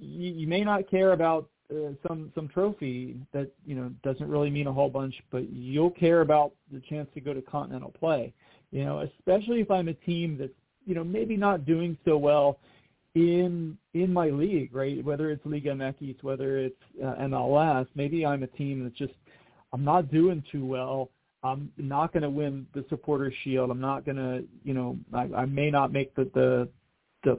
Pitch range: 130-160 Hz